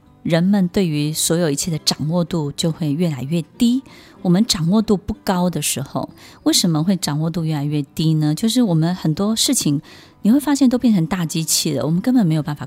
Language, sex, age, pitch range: Chinese, female, 20-39, 160-225 Hz